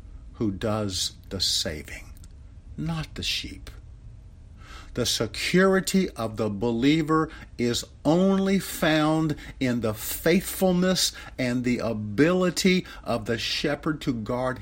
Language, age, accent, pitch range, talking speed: English, 50-69, American, 85-140 Hz, 105 wpm